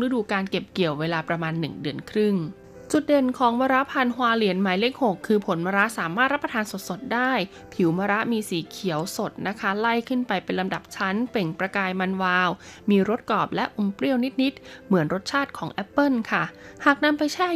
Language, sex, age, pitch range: Thai, female, 20-39, 190-240 Hz